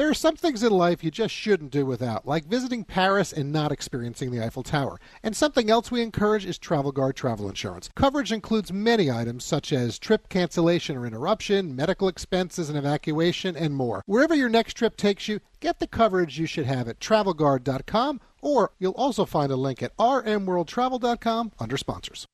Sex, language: male, English